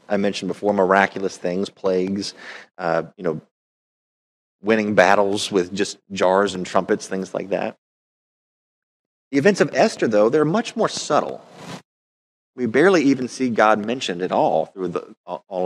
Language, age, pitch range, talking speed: English, 30-49, 95-140 Hz, 145 wpm